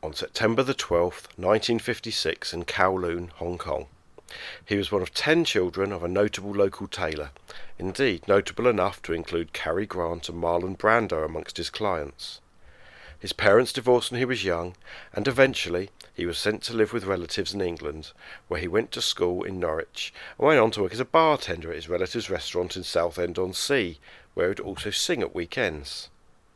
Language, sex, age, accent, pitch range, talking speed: English, male, 40-59, British, 85-125 Hz, 175 wpm